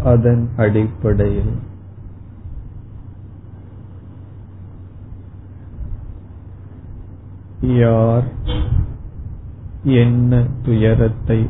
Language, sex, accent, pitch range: Tamil, male, native, 100-110 Hz